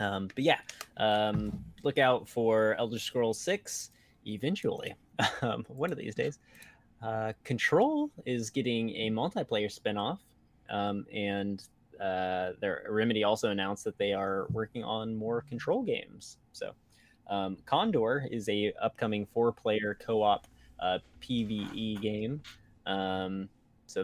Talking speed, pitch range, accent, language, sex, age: 125 wpm, 100-120 Hz, American, English, male, 20-39